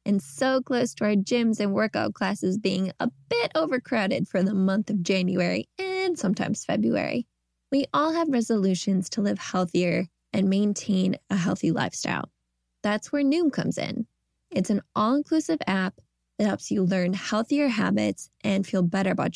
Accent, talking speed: American, 160 wpm